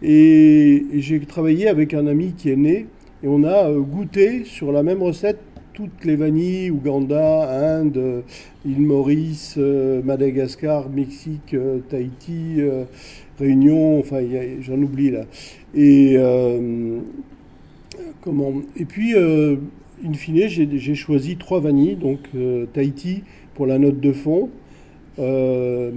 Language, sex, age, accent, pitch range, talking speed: French, male, 50-69, French, 135-165 Hz, 120 wpm